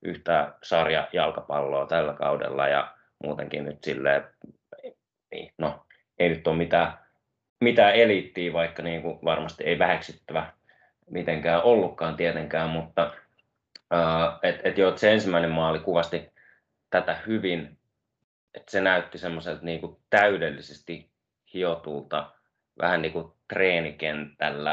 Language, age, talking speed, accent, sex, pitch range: Finnish, 20-39, 110 wpm, native, male, 75-85 Hz